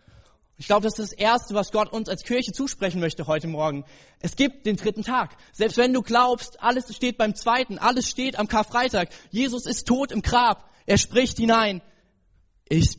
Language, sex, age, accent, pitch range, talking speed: German, male, 20-39, German, 125-195 Hz, 190 wpm